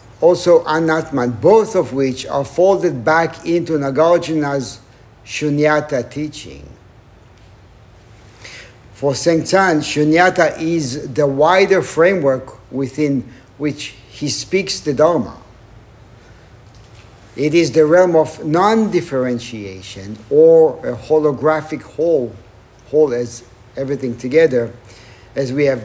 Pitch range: 115-160 Hz